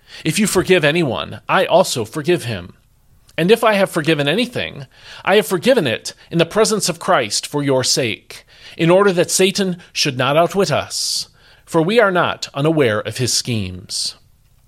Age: 40-59